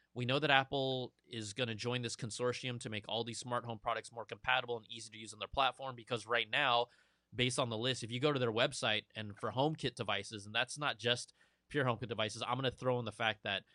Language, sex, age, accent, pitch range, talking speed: English, male, 20-39, American, 115-140 Hz, 255 wpm